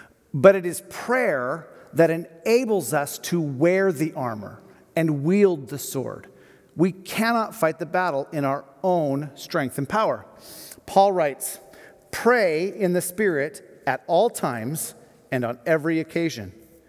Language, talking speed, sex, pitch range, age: English, 140 wpm, male, 145-205 Hz, 40-59